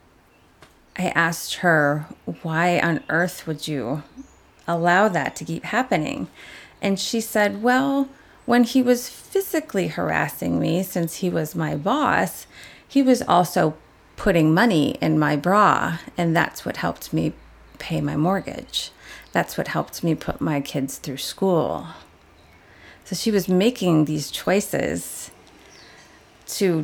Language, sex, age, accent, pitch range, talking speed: English, female, 30-49, American, 150-195 Hz, 135 wpm